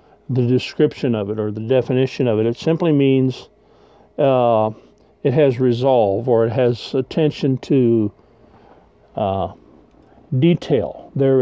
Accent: American